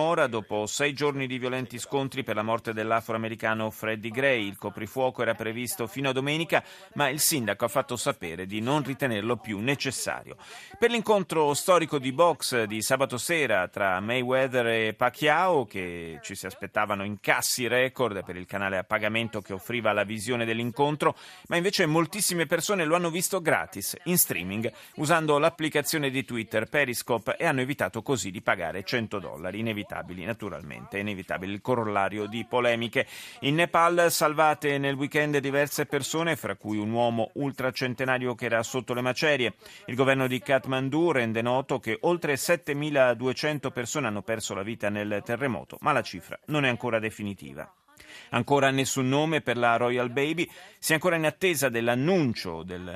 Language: Italian